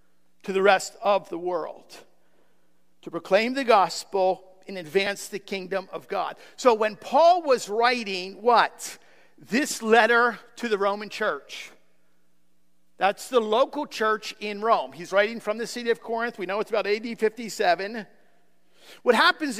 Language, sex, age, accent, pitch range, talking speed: English, male, 50-69, American, 165-255 Hz, 150 wpm